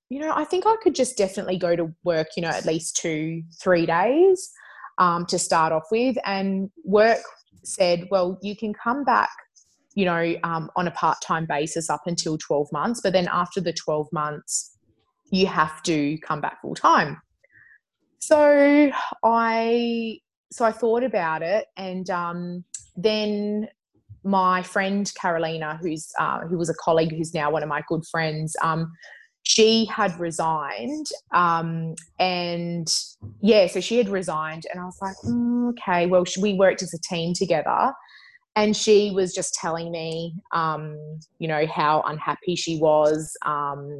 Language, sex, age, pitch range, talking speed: English, female, 20-39, 160-205 Hz, 160 wpm